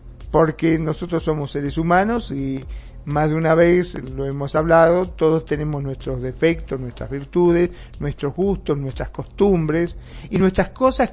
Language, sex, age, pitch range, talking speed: Spanish, male, 50-69, 150-195 Hz, 140 wpm